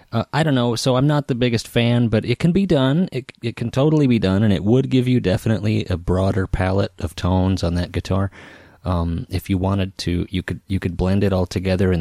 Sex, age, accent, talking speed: male, 30-49, American, 245 wpm